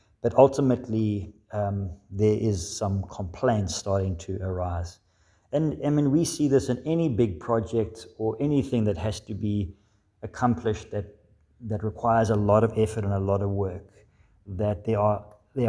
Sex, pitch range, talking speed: male, 100-115 Hz, 165 wpm